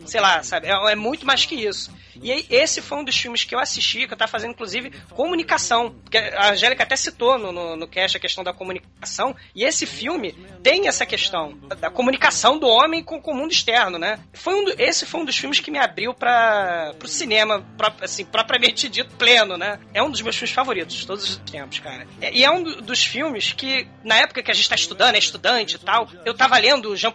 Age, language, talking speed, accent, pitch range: 20-39, Portuguese, 225 wpm, Brazilian, 210-290 Hz